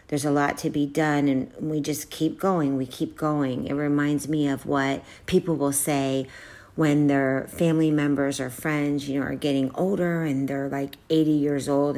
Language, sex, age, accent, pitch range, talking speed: English, female, 40-59, American, 140-160 Hz, 195 wpm